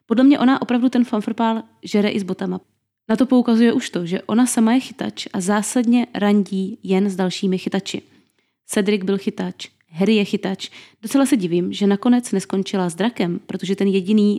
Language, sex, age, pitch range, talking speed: Czech, female, 20-39, 195-235 Hz, 185 wpm